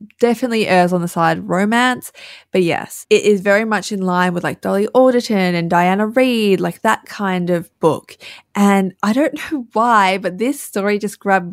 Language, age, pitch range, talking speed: English, 20-39, 170-215 Hz, 195 wpm